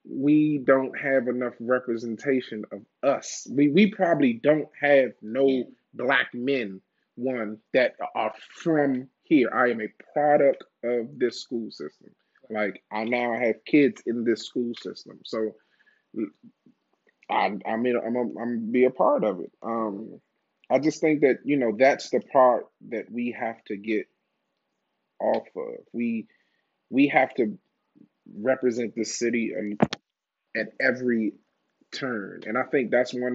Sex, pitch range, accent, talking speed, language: male, 110-135 Hz, American, 150 wpm, English